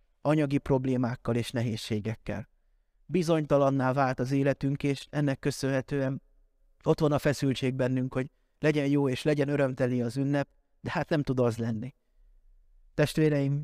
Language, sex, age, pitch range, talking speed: Hungarian, male, 30-49, 120-145 Hz, 135 wpm